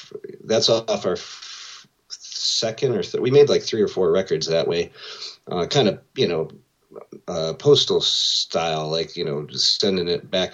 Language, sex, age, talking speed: English, male, 30-49, 170 wpm